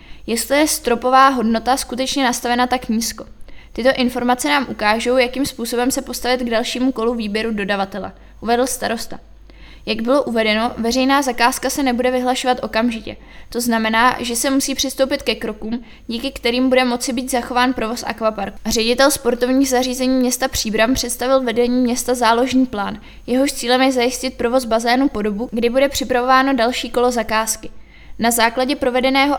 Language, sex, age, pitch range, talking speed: Czech, female, 20-39, 230-260 Hz, 155 wpm